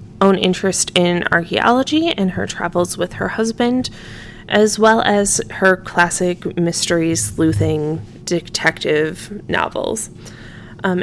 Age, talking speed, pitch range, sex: 20-39, 110 wpm, 170-215 Hz, female